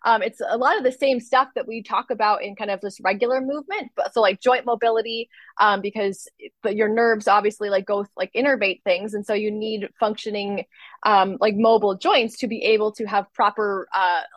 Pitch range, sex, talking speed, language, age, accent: 200-250 Hz, female, 210 wpm, English, 20-39, American